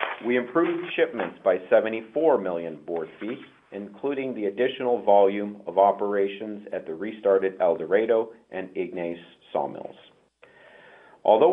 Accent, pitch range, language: American, 95-125 Hz, English